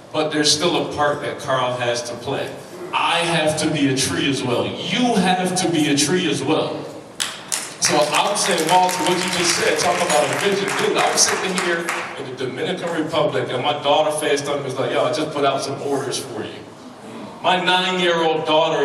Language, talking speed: English, 210 wpm